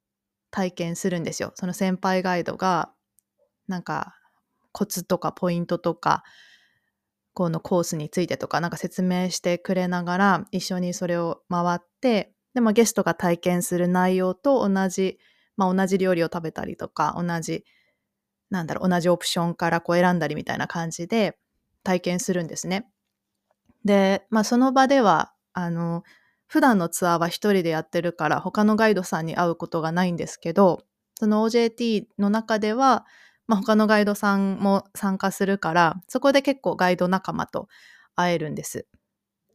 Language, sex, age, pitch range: Japanese, female, 20-39, 170-200 Hz